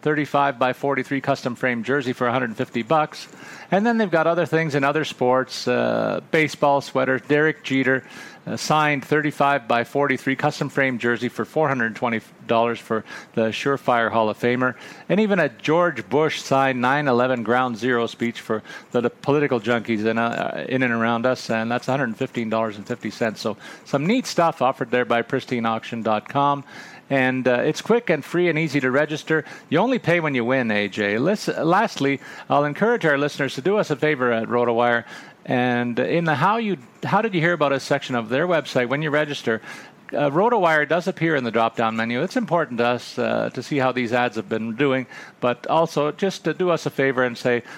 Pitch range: 120-150 Hz